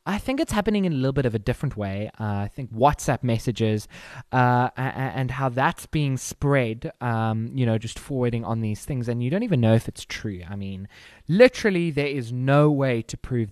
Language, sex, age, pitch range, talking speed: English, male, 20-39, 110-150 Hz, 215 wpm